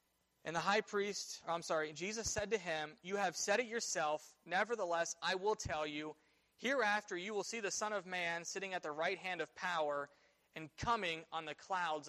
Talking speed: 200 wpm